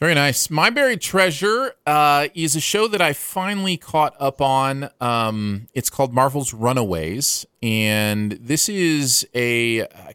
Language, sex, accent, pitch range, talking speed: English, male, American, 100-145 Hz, 150 wpm